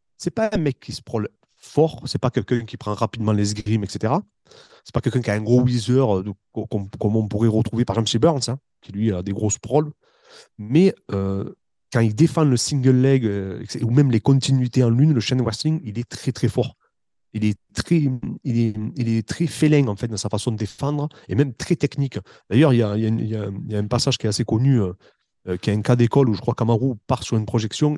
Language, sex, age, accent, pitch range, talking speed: French, male, 30-49, French, 110-140 Hz, 260 wpm